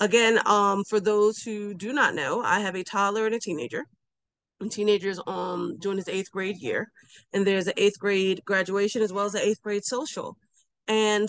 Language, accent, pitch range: English, American, 195-240 Hz